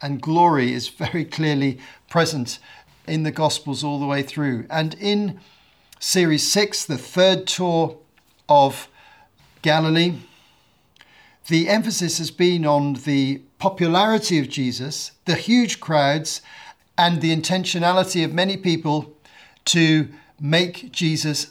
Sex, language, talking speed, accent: male, English, 120 wpm, British